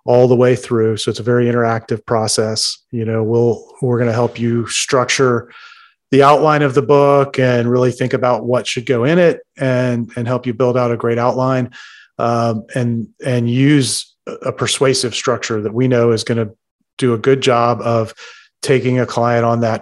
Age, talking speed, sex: 30-49, 195 wpm, male